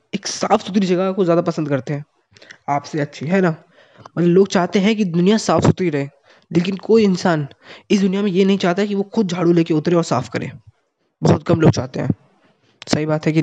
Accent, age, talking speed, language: native, 20-39, 220 wpm, Hindi